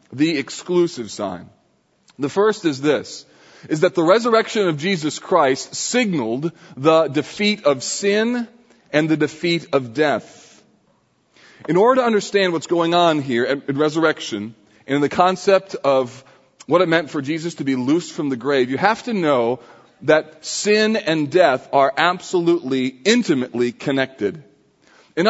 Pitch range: 145-195 Hz